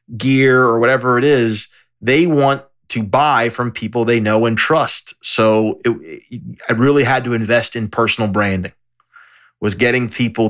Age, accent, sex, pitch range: 30-49, American, male, 110-125 Hz